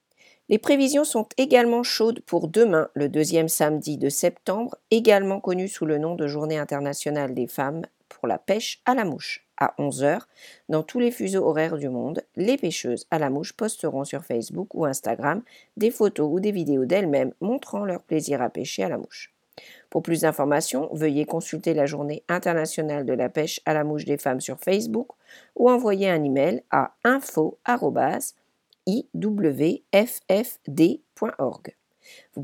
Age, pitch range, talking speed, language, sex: 50-69, 150-215 Hz, 160 wpm, English, female